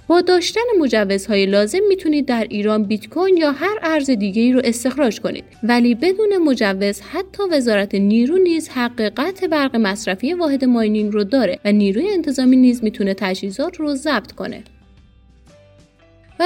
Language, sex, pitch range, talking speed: Persian, female, 215-315 Hz, 145 wpm